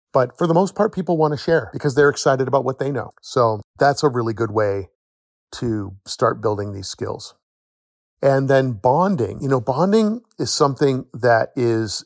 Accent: American